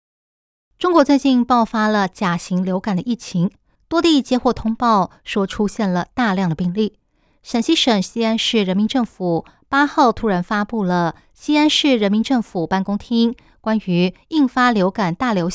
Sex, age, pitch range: female, 20-39, 185-240 Hz